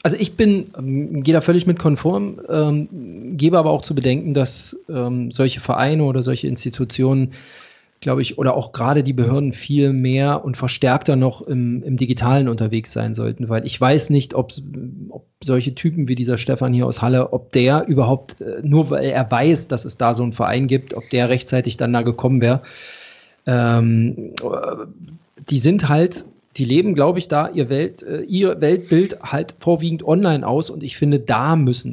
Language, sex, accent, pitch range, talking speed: German, male, German, 130-160 Hz, 175 wpm